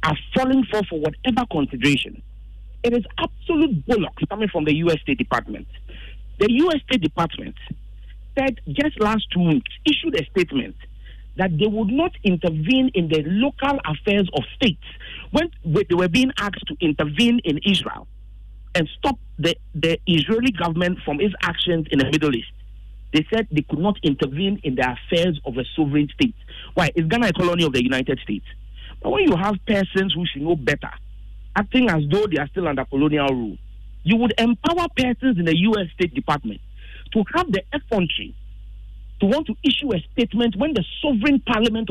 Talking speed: 175 wpm